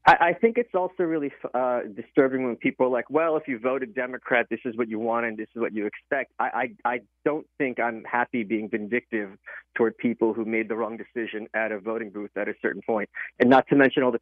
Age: 40-59